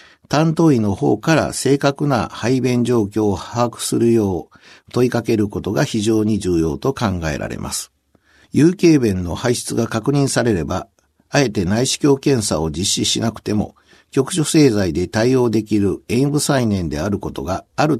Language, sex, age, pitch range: Japanese, male, 60-79, 100-140 Hz